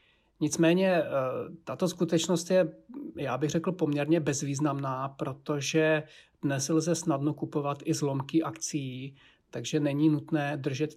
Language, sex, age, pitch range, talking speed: Czech, male, 40-59, 140-160 Hz, 115 wpm